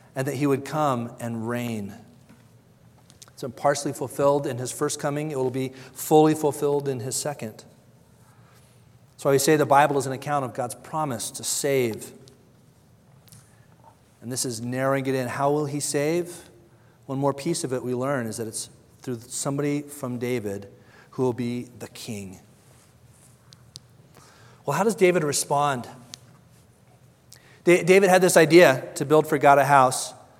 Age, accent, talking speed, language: 40-59, American, 160 wpm, English